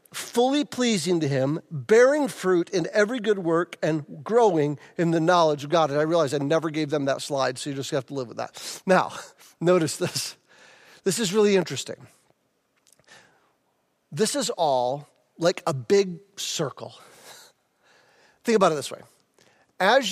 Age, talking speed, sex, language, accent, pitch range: 40-59, 160 wpm, male, English, American, 160-225 Hz